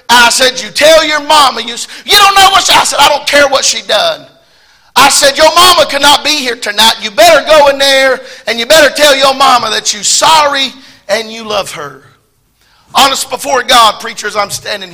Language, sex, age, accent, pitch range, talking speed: English, male, 40-59, American, 230-285 Hz, 210 wpm